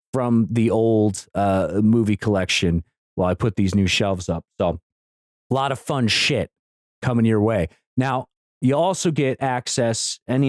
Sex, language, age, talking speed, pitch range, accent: male, English, 30-49, 160 wpm, 105-135 Hz, American